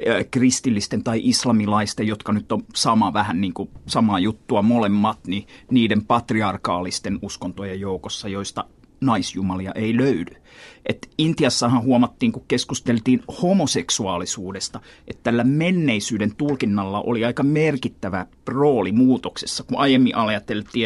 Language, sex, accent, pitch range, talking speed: Finnish, male, native, 105-130 Hz, 115 wpm